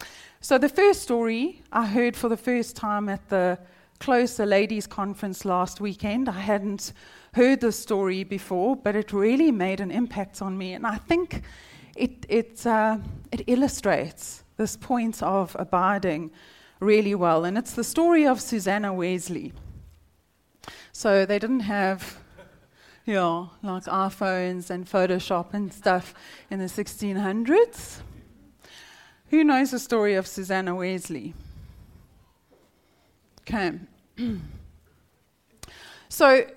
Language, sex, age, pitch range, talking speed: English, female, 30-49, 190-245 Hz, 125 wpm